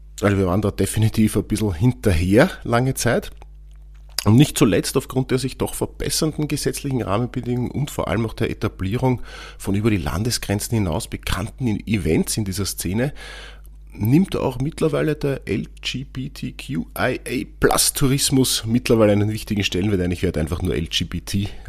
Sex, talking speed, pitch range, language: male, 140 wpm, 90-120 Hz, German